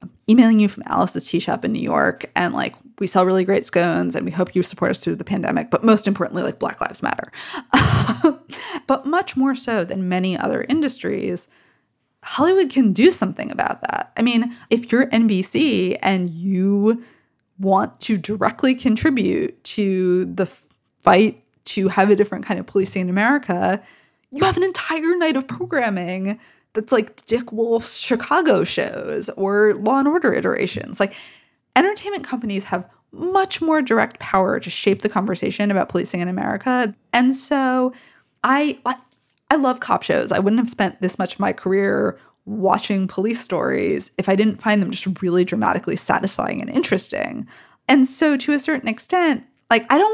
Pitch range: 195-285 Hz